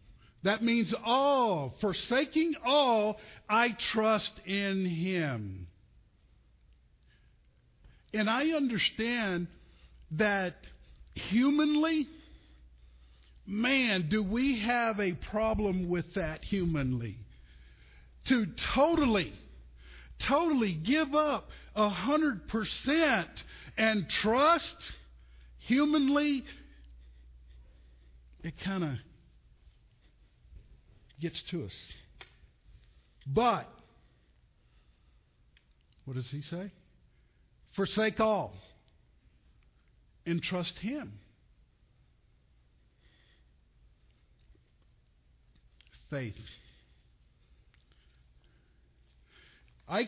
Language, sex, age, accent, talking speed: English, male, 50-69, American, 60 wpm